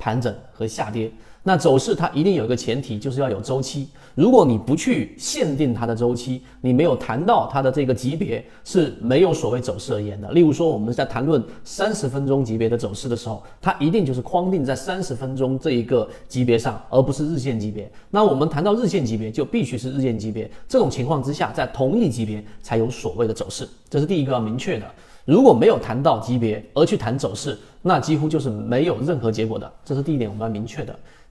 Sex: male